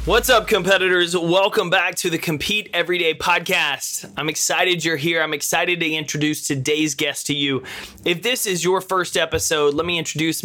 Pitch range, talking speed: 145-175 Hz, 185 wpm